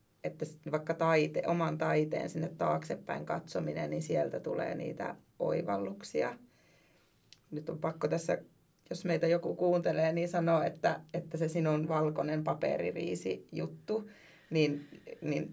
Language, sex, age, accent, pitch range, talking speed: Finnish, female, 30-49, native, 155-170 Hz, 125 wpm